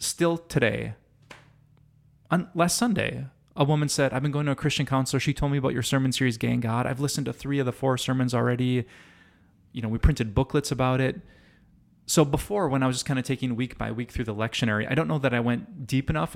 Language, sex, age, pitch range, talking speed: English, male, 20-39, 115-140 Hz, 225 wpm